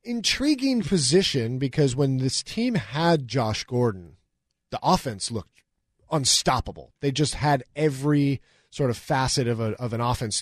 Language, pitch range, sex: English, 120-165 Hz, male